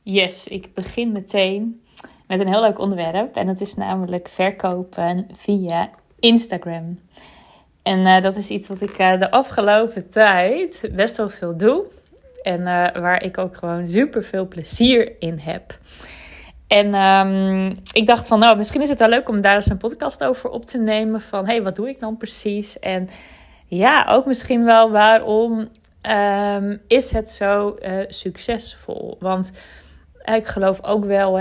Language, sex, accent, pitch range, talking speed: Dutch, female, Dutch, 190-235 Hz, 165 wpm